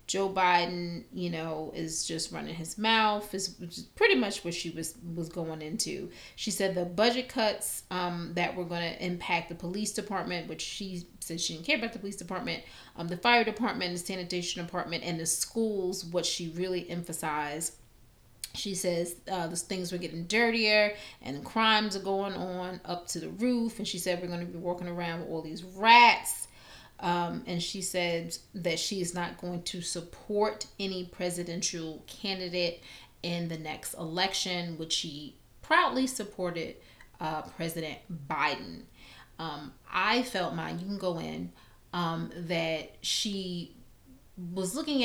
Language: English